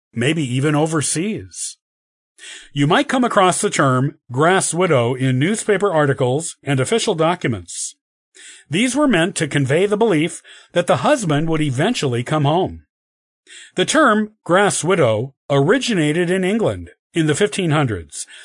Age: 50-69